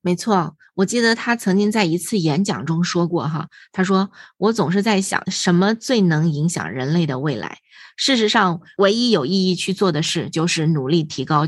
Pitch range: 165-200 Hz